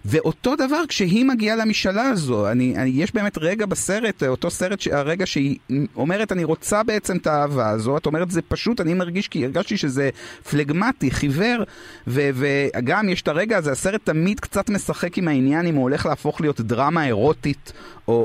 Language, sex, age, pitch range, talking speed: Hebrew, male, 30-49, 125-175 Hz, 180 wpm